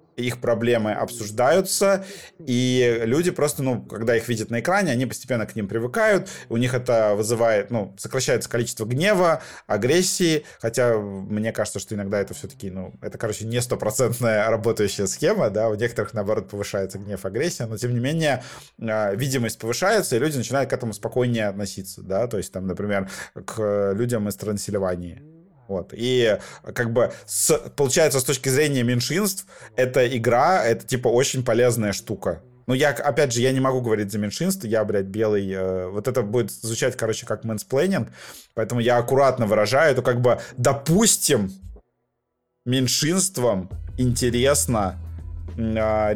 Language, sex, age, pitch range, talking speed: Russian, male, 20-39, 105-130 Hz, 155 wpm